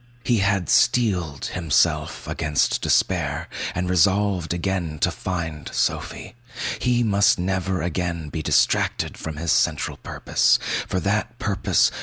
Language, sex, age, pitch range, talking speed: English, male, 30-49, 85-115 Hz, 125 wpm